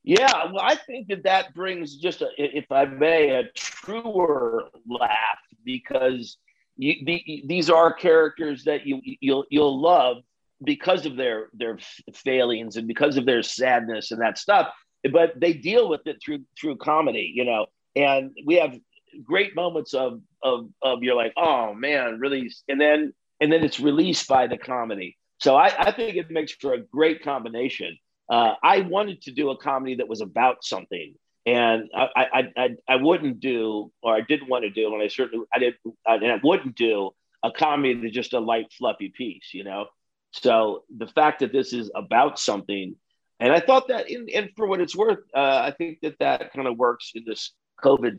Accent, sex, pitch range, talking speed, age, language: American, male, 120-175 Hz, 195 wpm, 50-69, English